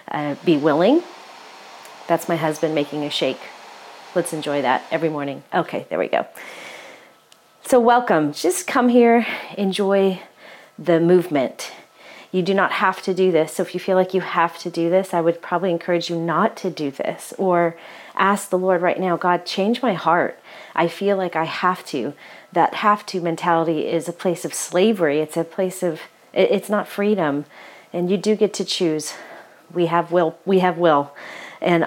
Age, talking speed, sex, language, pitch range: 30-49, 185 wpm, female, English, 160-190 Hz